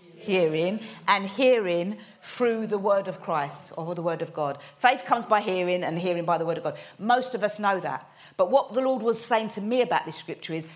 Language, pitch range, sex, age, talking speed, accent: English, 180-245 Hz, female, 40-59, 230 wpm, British